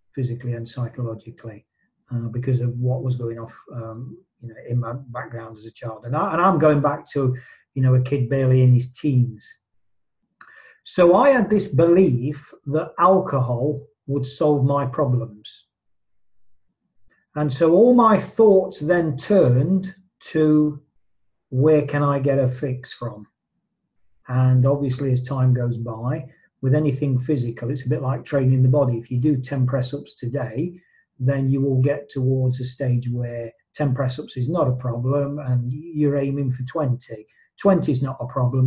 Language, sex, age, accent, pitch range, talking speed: English, male, 40-59, British, 125-150 Hz, 160 wpm